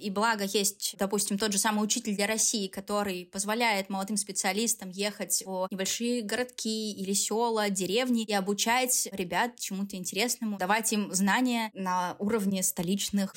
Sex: female